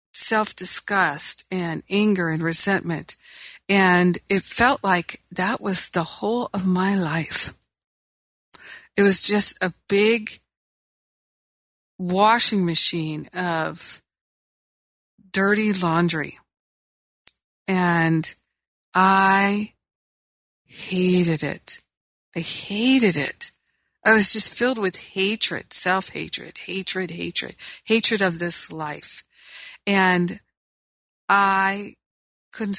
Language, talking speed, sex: English, 90 wpm, female